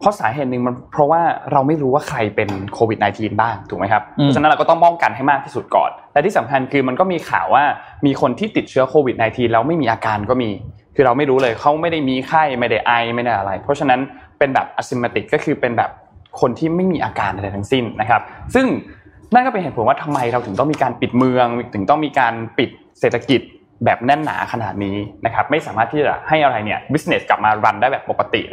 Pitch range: 115-165 Hz